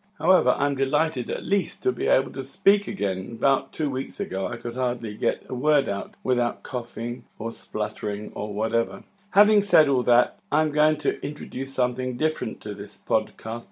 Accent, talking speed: British, 180 wpm